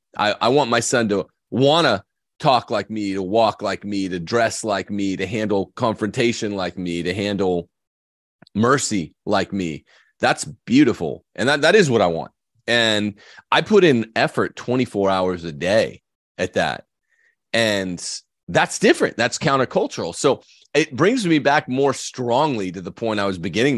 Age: 30-49